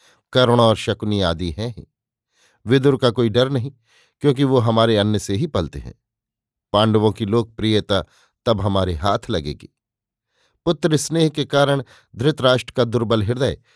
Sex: male